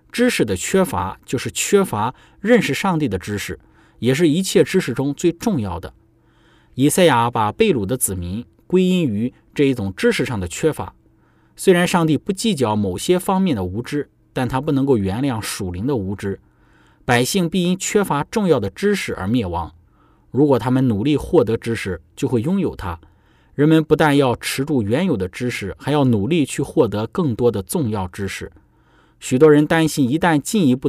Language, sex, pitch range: Chinese, male, 100-155 Hz